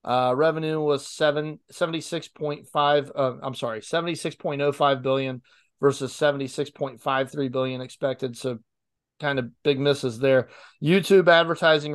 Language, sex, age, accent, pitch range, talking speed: English, male, 30-49, American, 130-150 Hz, 165 wpm